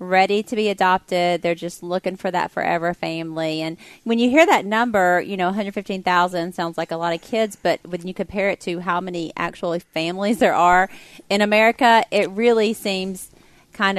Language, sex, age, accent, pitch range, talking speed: English, female, 30-49, American, 170-200 Hz, 190 wpm